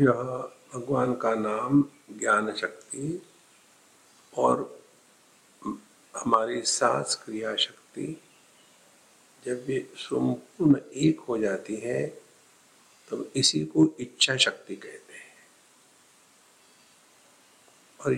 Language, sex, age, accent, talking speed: English, male, 50-69, Indian, 85 wpm